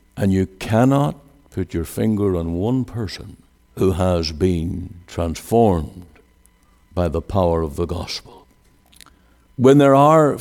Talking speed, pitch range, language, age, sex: 125 wpm, 85-110 Hz, English, 60-79, male